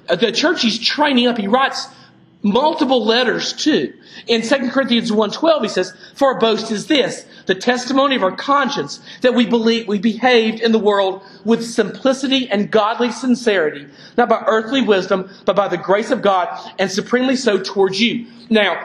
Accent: American